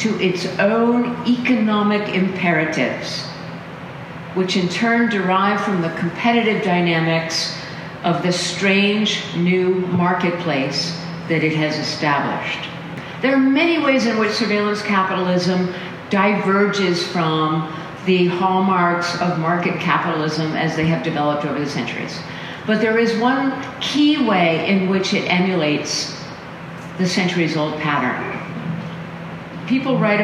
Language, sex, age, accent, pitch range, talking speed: English, female, 50-69, American, 165-205 Hz, 115 wpm